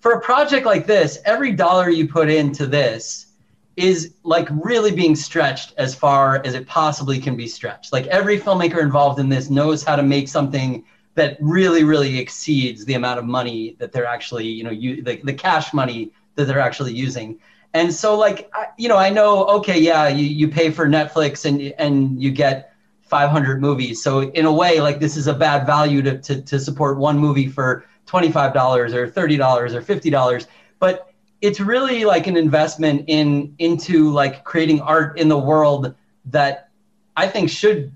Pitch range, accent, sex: 135-165 Hz, American, male